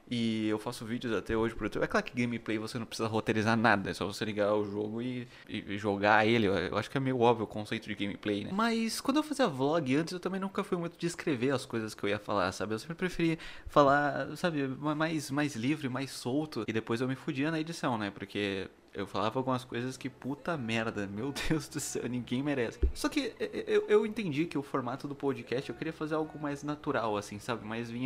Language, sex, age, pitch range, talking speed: Portuguese, male, 20-39, 115-170 Hz, 235 wpm